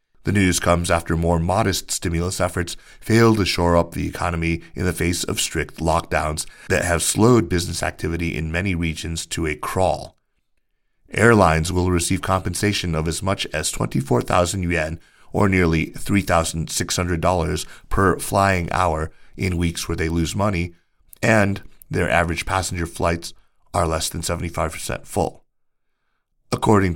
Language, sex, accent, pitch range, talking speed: English, male, American, 80-95 Hz, 140 wpm